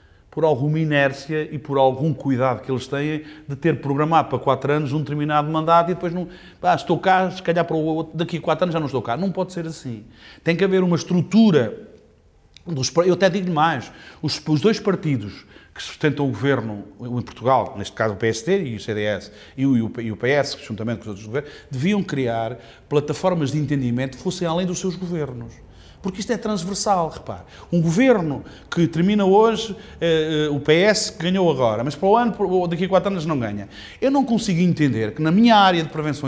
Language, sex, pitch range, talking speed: Portuguese, male, 140-200 Hz, 200 wpm